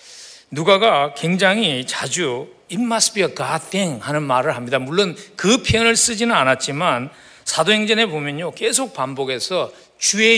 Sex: male